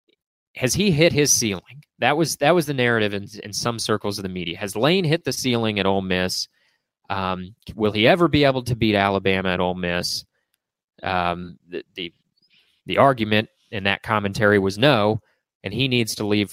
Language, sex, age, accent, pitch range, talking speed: English, male, 30-49, American, 100-145 Hz, 190 wpm